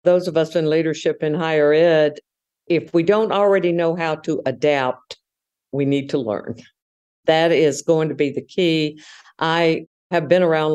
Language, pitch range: English, 145-180 Hz